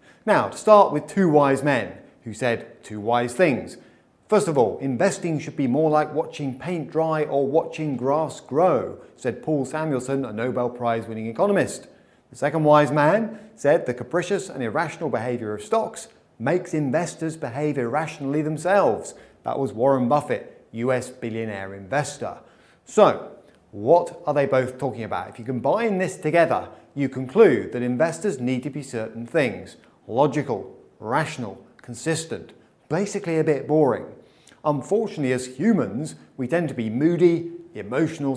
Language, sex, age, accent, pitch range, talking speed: English, male, 30-49, British, 125-165 Hz, 150 wpm